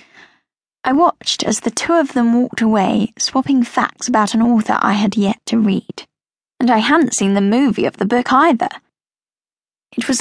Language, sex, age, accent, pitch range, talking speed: English, female, 10-29, British, 210-275 Hz, 180 wpm